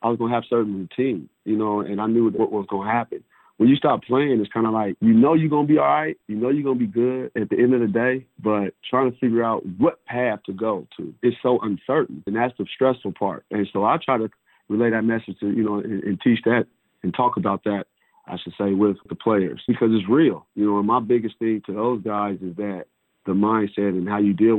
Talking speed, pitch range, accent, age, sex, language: 270 wpm, 100-115 Hz, American, 40-59, male, English